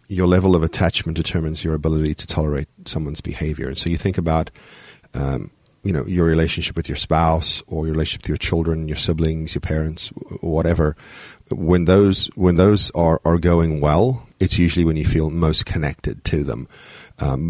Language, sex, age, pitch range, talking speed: English, male, 40-59, 80-95 Hz, 180 wpm